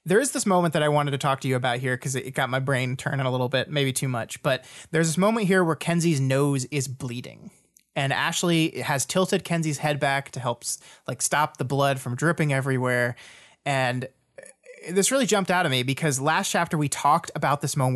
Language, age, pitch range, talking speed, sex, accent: English, 20-39, 130-170 Hz, 220 wpm, male, American